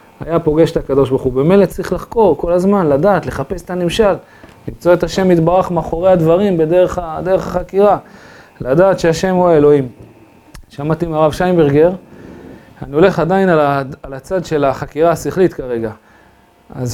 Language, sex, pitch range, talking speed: Hebrew, male, 130-165 Hz, 150 wpm